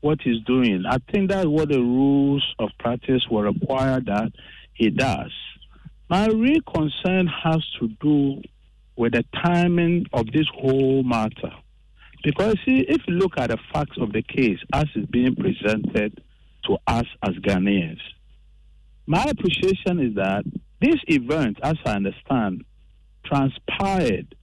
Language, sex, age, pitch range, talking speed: English, male, 50-69, 120-180 Hz, 140 wpm